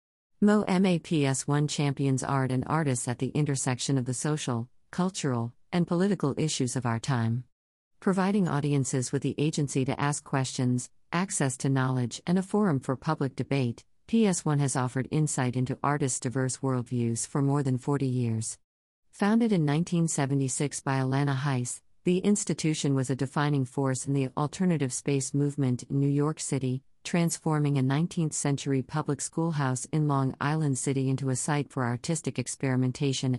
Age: 50-69